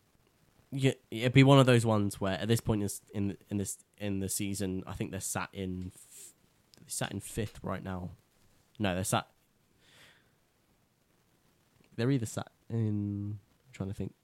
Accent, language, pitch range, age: British, English, 95-110 Hz, 10-29